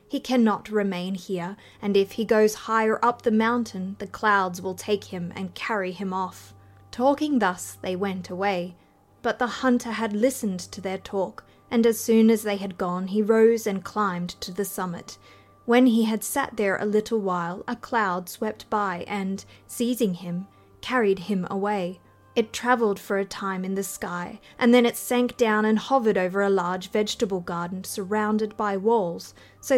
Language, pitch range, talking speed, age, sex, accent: English, 190-235 Hz, 180 wpm, 30-49, female, Australian